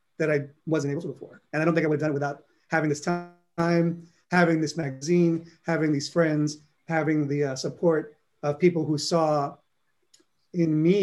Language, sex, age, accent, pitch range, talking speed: English, male, 30-49, American, 145-170 Hz, 190 wpm